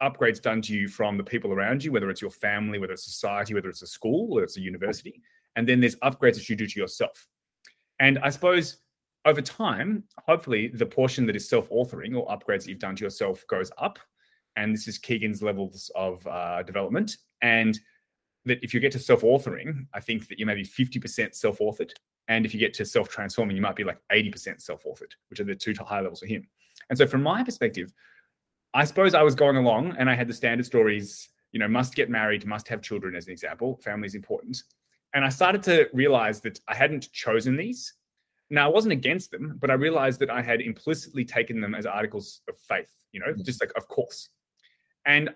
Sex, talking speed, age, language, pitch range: male, 215 wpm, 30-49, English, 110-170 Hz